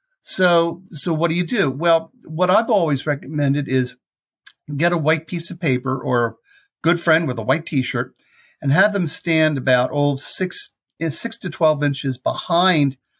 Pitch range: 135-190 Hz